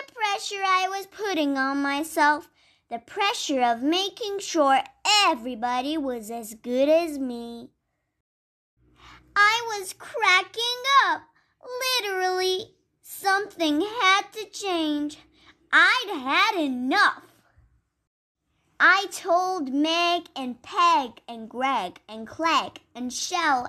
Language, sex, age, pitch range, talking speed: Persian, male, 10-29, 270-375 Hz, 95 wpm